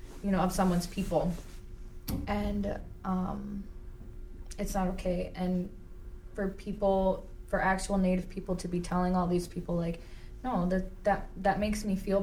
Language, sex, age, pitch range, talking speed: English, female, 20-39, 175-195 Hz, 150 wpm